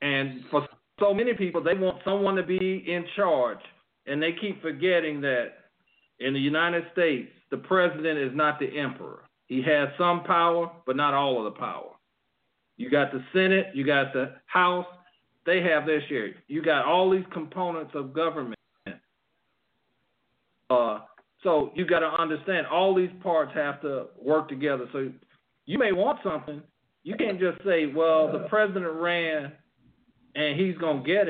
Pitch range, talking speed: 155-195 Hz, 165 wpm